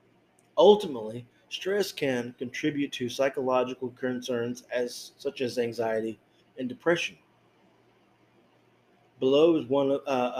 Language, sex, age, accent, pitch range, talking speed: English, male, 30-49, American, 115-135 Hz, 105 wpm